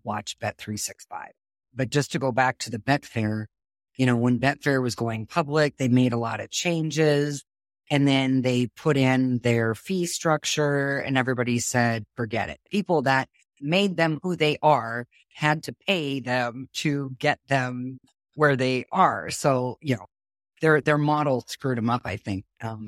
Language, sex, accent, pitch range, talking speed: English, female, American, 120-145 Hz, 170 wpm